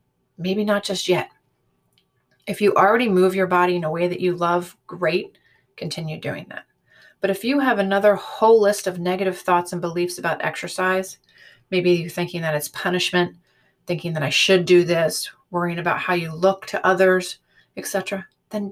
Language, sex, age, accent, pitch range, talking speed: English, female, 30-49, American, 170-205 Hz, 175 wpm